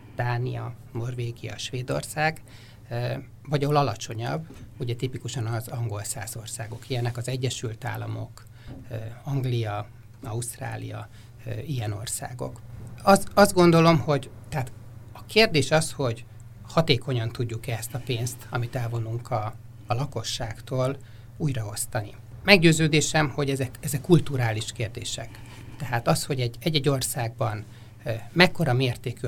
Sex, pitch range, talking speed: male, 115-140 Hz, 110 wpm